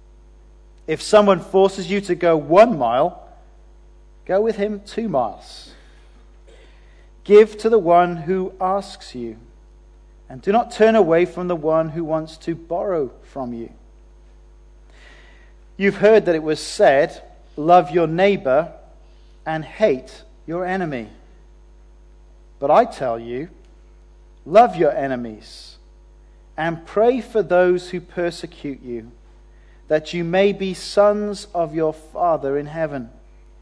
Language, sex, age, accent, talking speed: English, male, 40-59, British, 125 wpm